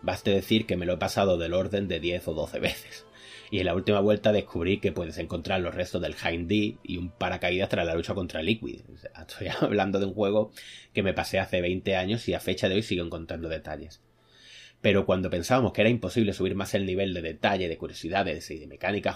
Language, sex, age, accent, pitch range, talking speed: Spanish, male, 30-49, Spanish, 90-105 Hz, 220 wpm